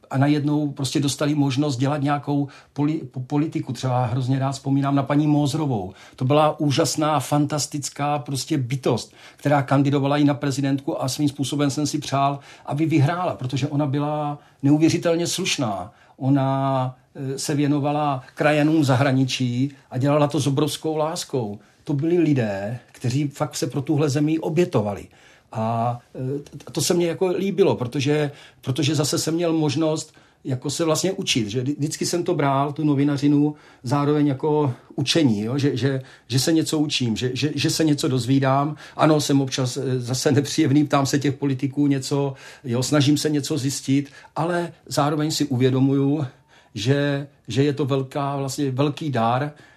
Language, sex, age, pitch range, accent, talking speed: Czech, male, 50-69, 135-150 Hz, native, 150 wpm